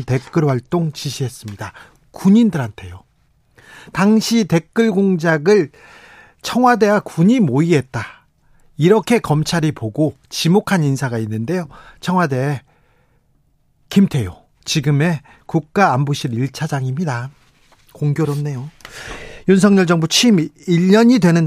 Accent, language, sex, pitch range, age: native, Korean, male, 140-180 Hz, 40-59